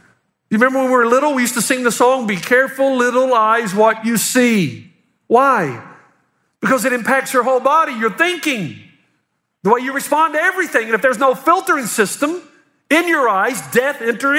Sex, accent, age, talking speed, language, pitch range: male, American, 50-69, 190 wpm, English, 235-315 Hz